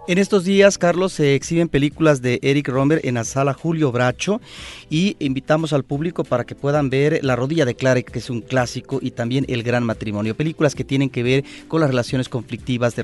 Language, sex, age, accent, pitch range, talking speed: Spanish, male, 40-59, Mexican, 130-160 Hz, 210 wpm